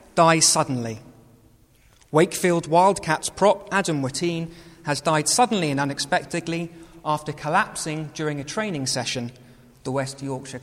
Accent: British